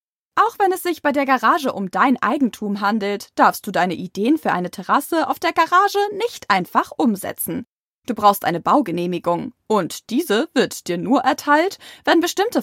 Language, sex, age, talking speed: German, female, 20-39, 170 wpm